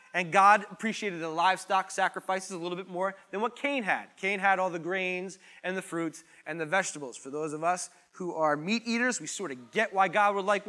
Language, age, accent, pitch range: English, 30-49, American, 175-220 Hz